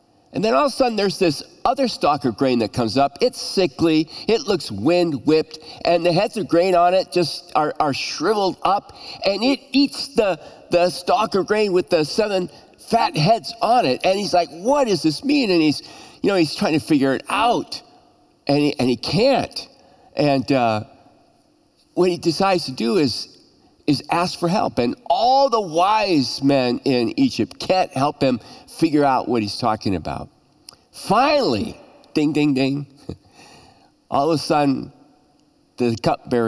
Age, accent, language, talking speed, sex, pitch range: 50-69, American, English, 180 wpm, male, 140-220 Hz